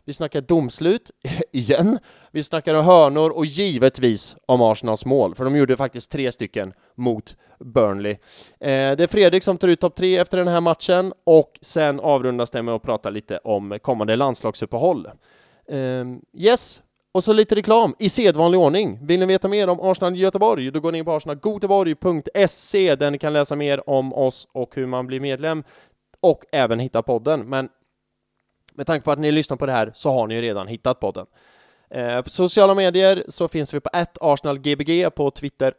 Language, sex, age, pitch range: English, male, 20-39, 125-180 Hz